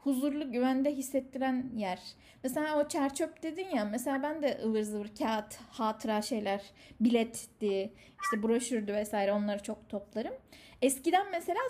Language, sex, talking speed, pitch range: Turkish, female, 140 wpm, 230-310 Hz